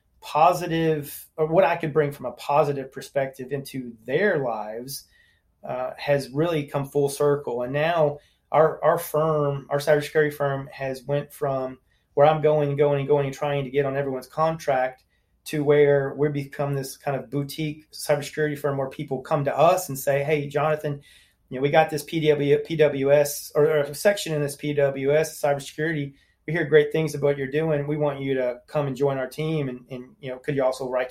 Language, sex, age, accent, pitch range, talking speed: English, male, 30-49, American, 130-150 Hz, 195 wpm